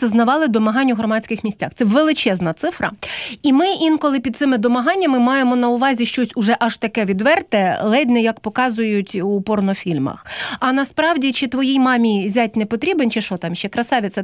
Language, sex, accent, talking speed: Ukrainian, female, native, 175 wpm